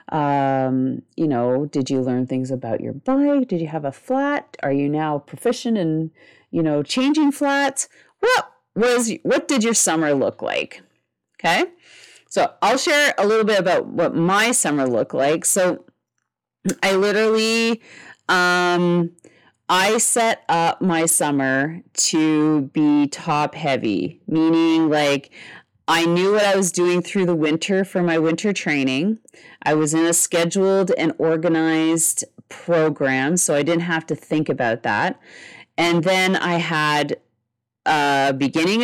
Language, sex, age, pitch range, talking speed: English, female, 40-59, 150-200 Hz, 145 wpm